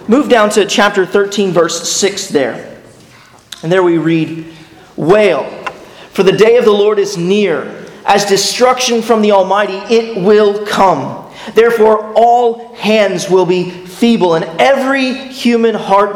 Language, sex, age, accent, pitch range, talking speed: English, male, 30-49, American, 180-225 Hz, 145 wpm